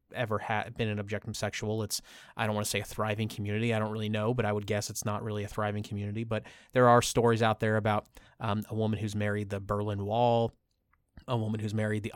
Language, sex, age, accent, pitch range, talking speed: English, male, 20-39, American, 105-125 Hz, 240 wpm